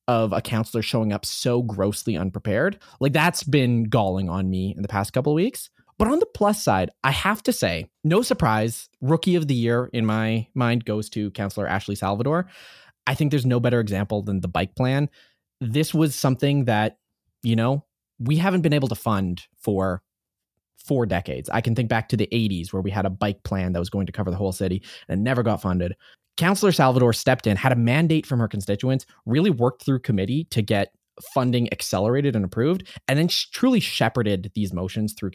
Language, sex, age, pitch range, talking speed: English, male, 20-39, 100-145 Hz, 205 wpm